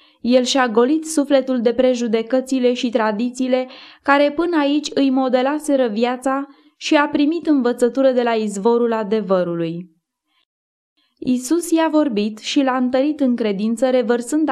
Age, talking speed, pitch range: 20-39, 130 wpm, 230-275 Hz